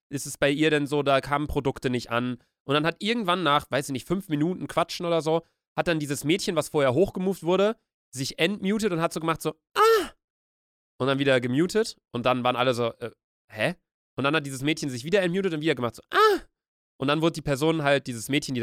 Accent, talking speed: German, 235 wpm